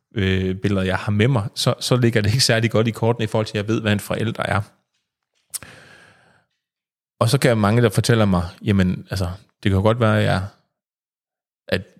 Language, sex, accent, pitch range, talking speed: Danish, male, native, 95-120 Hz, 210 wpm